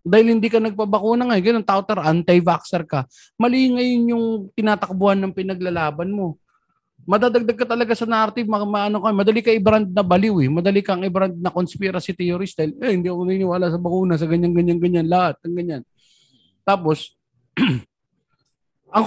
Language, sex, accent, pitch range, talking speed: Filipino, male, native, 135-200 Hz, 160 wpm